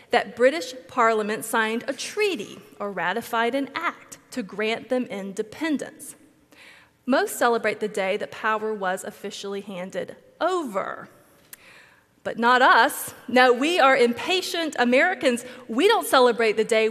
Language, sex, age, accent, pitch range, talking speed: English, female, 30-49, American, 220-270 Hz, 130 wpm